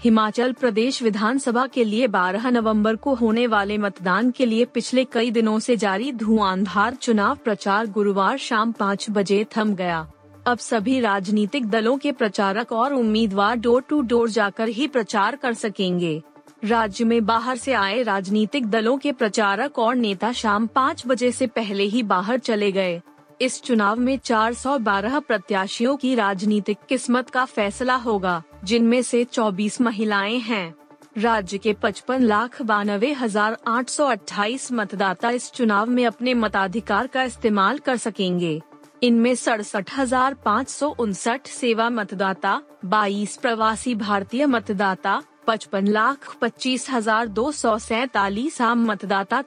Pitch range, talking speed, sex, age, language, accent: 205-250 Hz, 130 wpm, female, 30-49, Hindi, native